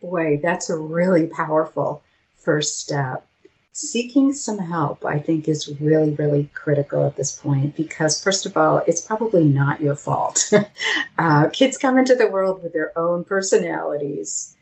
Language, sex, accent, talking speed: English, female, American, 155 wpm